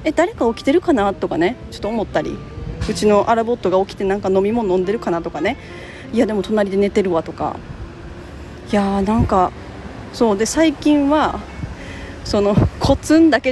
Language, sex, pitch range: Japanese, female, 180-275 Hz